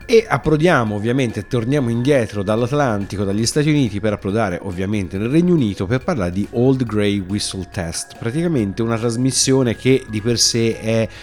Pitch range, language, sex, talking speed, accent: 100-130 Hz, Italian, male, 160 wpm, native